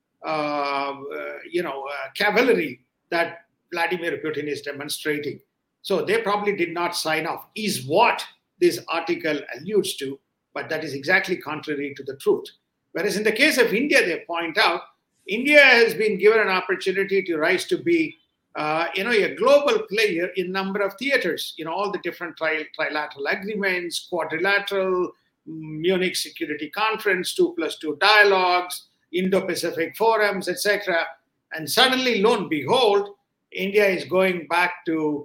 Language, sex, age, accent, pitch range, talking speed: English, male, 50-69, Indian, 155-210 Hz, 155 wpm